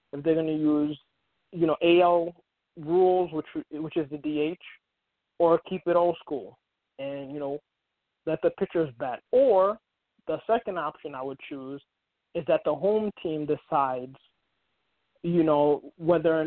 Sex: male